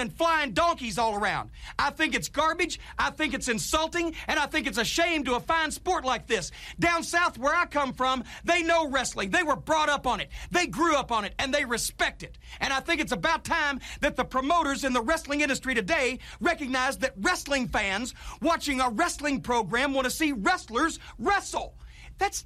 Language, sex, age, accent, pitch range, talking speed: English, male, 40-59, American, 255-320 Hz, 205 wpm